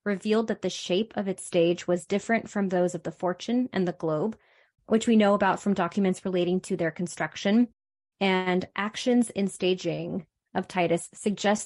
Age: 20-39